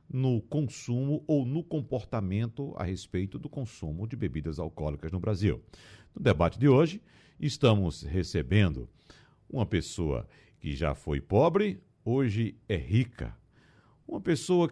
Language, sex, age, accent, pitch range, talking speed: Portuguese, male, 60-79, Brazilian, 95-145 Hz, 125 wpm